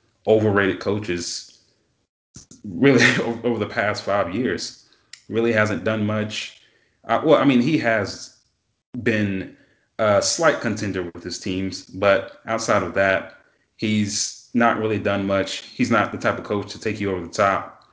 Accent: American